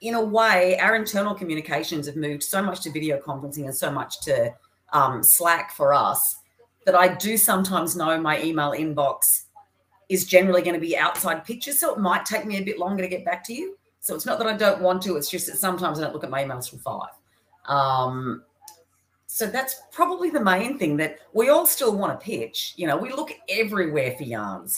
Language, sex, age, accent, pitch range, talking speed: English, female, 40-59, Australian, 145-200 Hz, 220 wpm